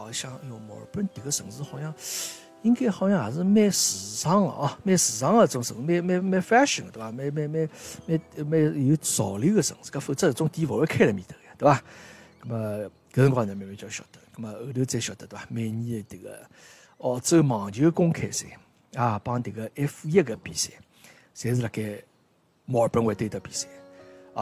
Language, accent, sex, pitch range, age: Chinese, native, male, 110-155 Hz, 60-79